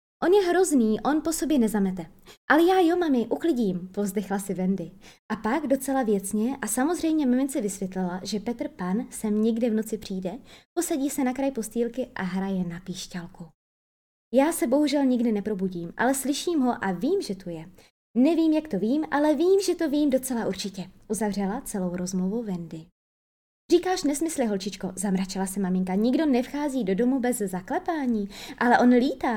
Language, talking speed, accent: Czech, 170 wpm, native